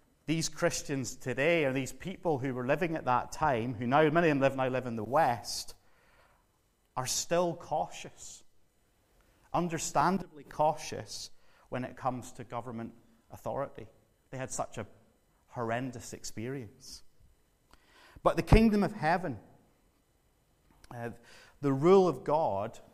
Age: 30-49